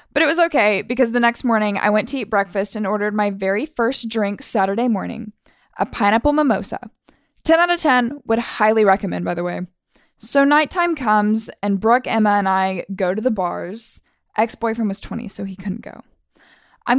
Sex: female